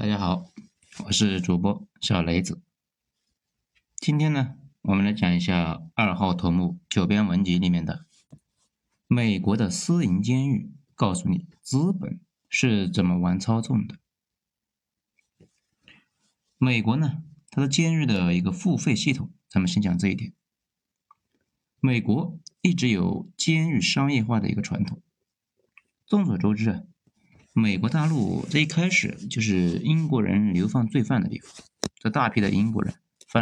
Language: Chinese